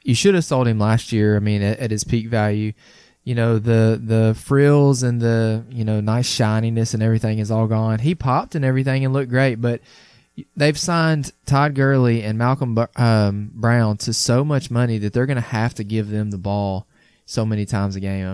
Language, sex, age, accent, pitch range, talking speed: English, male, 20-39, American, 100-120 Hz, 215 wpm